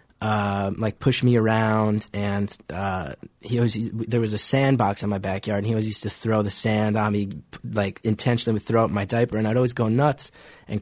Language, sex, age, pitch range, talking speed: English, male, 20-39, 105-130 Hz, 220 wpm